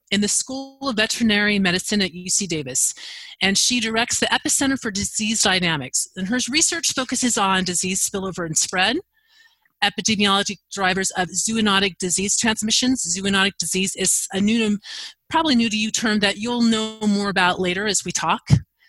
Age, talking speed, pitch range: 30-49, 160 wpm, 190-230 Hz